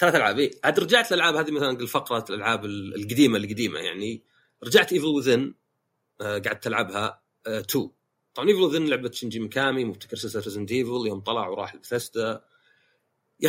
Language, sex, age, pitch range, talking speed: Arabic, male, 40-59, 115-155 Hz, 145 wpm